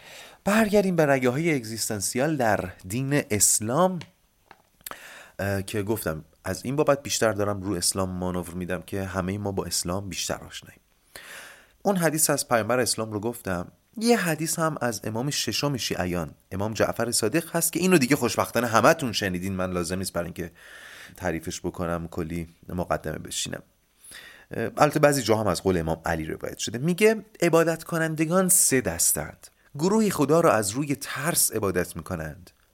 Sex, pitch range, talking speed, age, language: male, 90-145 Hz, 150 wpm, 30-49, Persian